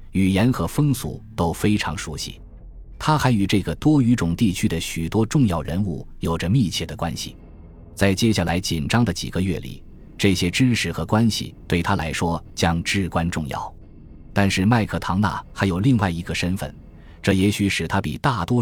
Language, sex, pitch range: Chinese, male, 85-110 Hz